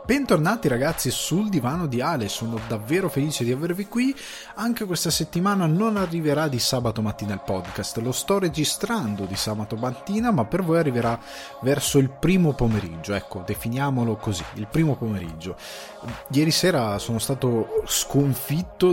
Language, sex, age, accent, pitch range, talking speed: Italian, male, 20-39, native, 110-155 Hz, 150 wpm